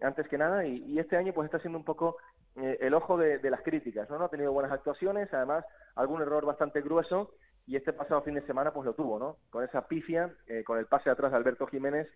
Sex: male